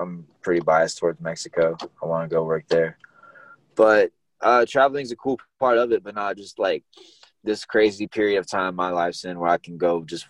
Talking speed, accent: 215 wpm, American